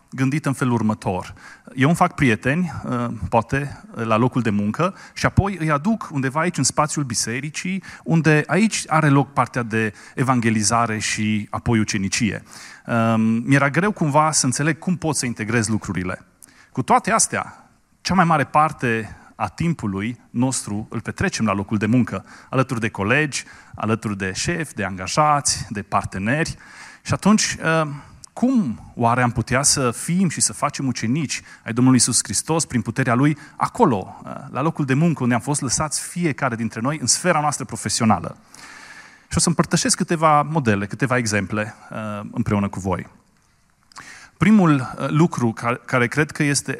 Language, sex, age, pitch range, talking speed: Romanian, male, 30-49, 110-150 Hz, 155 wpm